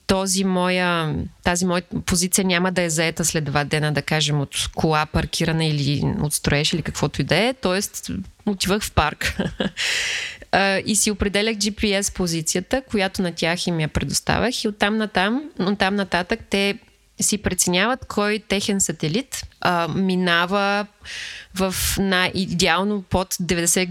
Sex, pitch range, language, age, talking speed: female, 170-200 Hz, Bulgarian, 20-39, 145 wpm